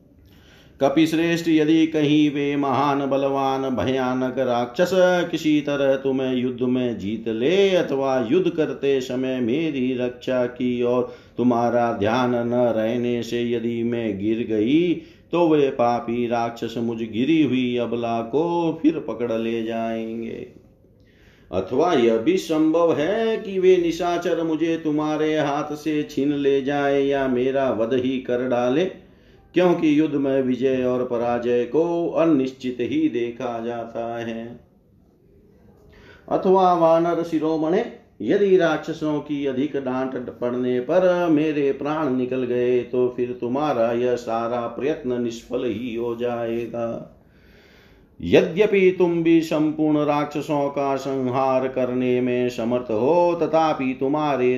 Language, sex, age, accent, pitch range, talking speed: Hindi, male, 50-69, native, 120-155 Hz, 125 wpm